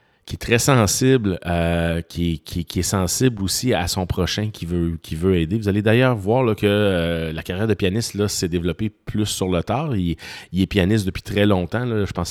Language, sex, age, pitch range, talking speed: French, male, 30-49, 85-105 Hz, 210 wpm